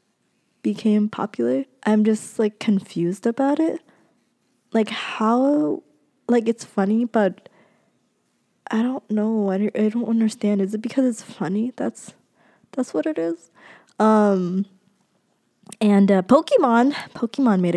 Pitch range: 195-240 Hz